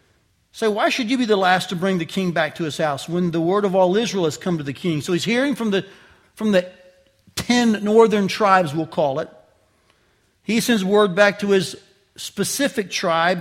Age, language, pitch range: 40-59, English, 175-220 Hz